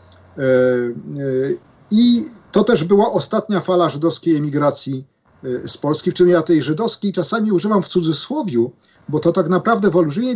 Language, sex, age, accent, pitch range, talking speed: Polish, male, 50-69, native, 135-190 Hz, 145 wpm